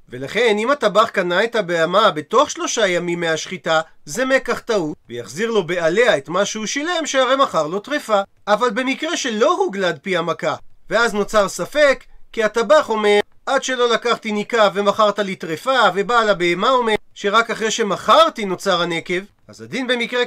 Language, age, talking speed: Hebrew, 40-59, 160 wpm